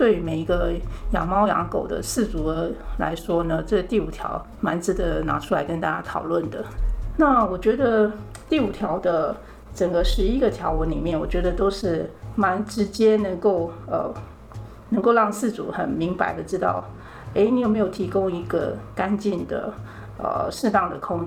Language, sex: Chinese, female